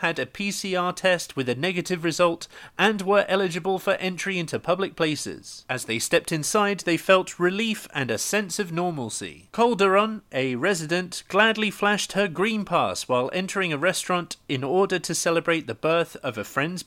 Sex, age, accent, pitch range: male, 30-49, British, 160-200 Hz